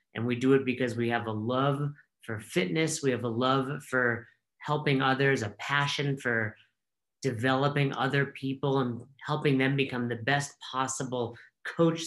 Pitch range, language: 120-145 Hz, English